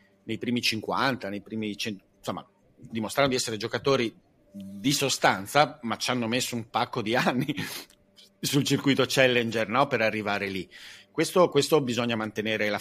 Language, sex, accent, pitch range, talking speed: Italian, male, native, 105-130 Hz, 155 wpm